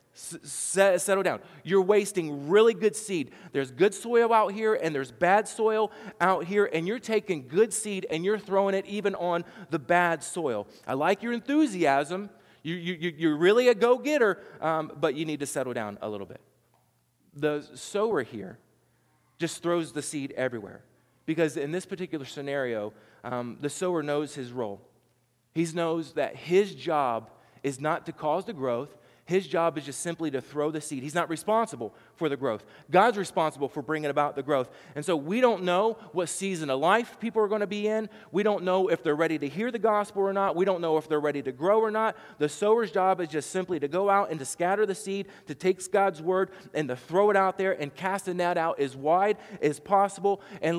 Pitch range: 145-195 Hz